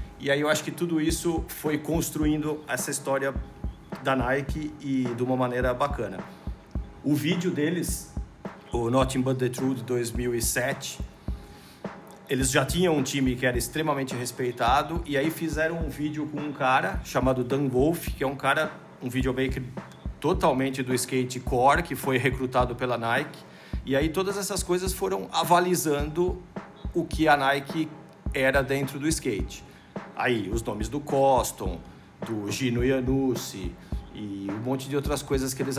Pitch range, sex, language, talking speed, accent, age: 125-155 Hz, male, Portuguese, 155 wpm, Brazilian, 50-69